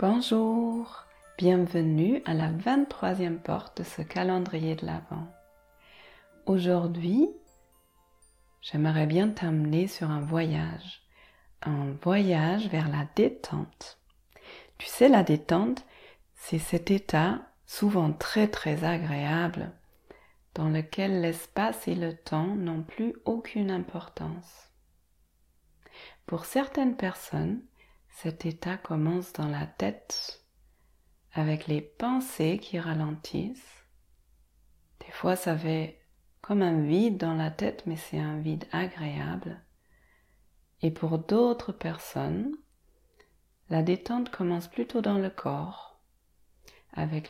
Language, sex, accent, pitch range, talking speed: French, female, French, 150-195 Hz, 110 wpm